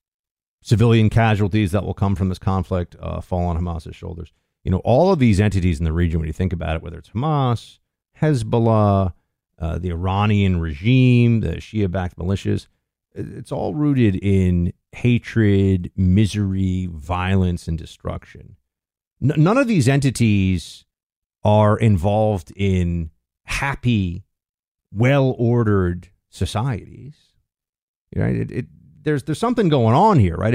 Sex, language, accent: male, English, American